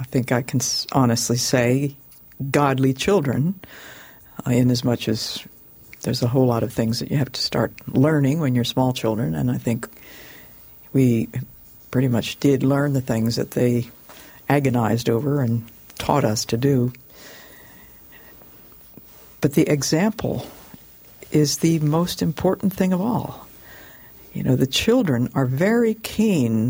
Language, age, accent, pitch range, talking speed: English, 60-79, American, 120-150 Hz, 145 wpm